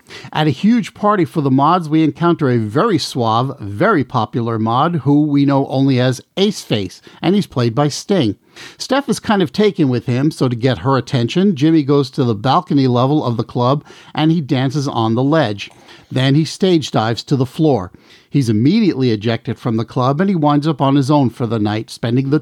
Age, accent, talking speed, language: 50-69, American, 210 wpm, English